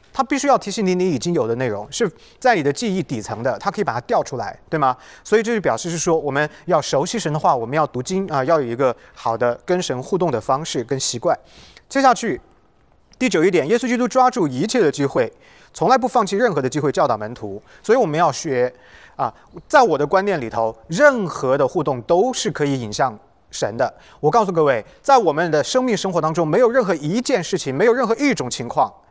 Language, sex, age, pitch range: English, male, 30-49, 130-205 Hz